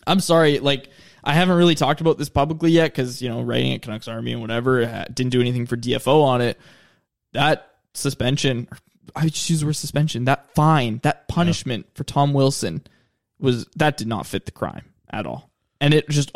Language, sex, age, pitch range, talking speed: English, male, 20-39, 130-170 Hz, 195 wpm